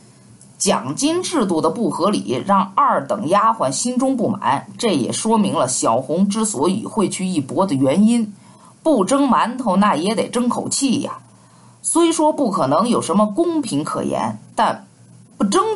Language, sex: Chinese, female